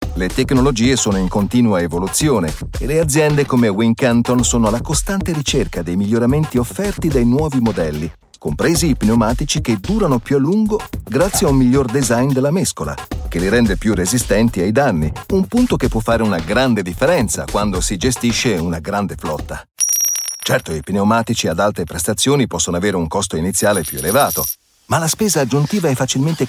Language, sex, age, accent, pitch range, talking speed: Italian, male, 40-59, native, 100-145 Hz, 170 wpm